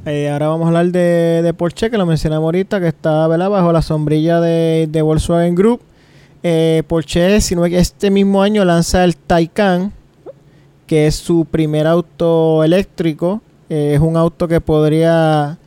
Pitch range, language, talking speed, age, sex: 155-180 Hz, Spanish, 155 wpm, 20-39, male